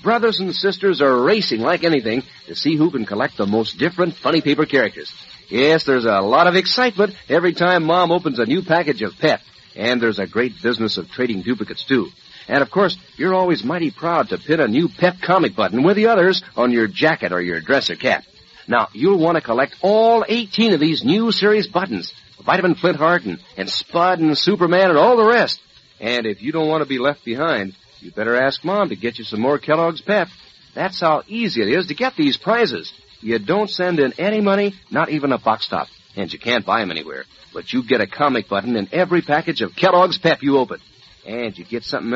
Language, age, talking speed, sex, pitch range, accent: English, 50-69, 215 wpm, male, 125-190 Hz, American